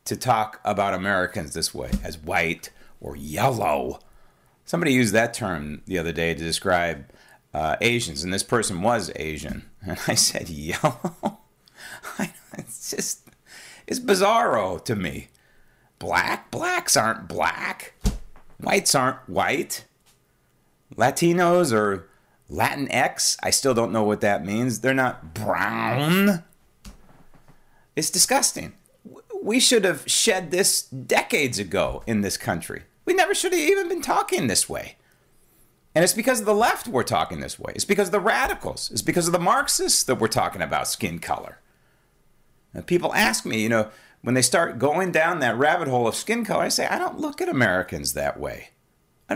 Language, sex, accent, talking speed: English, male, American, 155 wpm